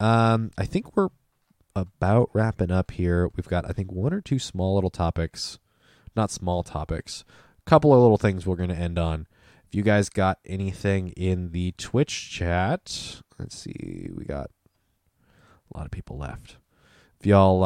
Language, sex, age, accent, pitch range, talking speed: English, male, 20-39, American, 90-105 Hz, 175 wpm